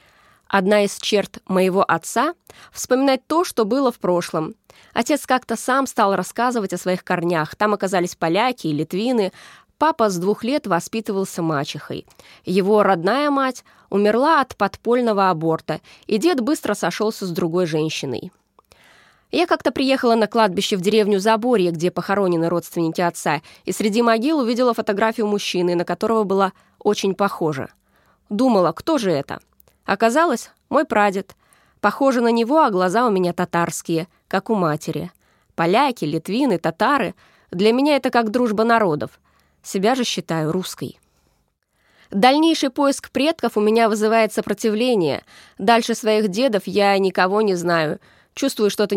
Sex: female